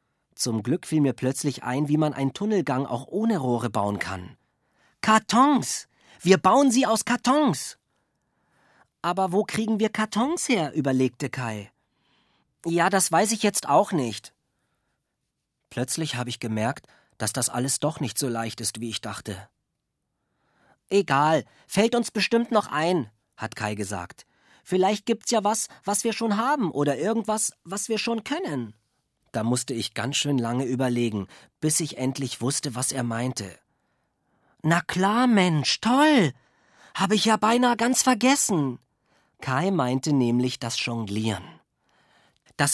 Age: 40-59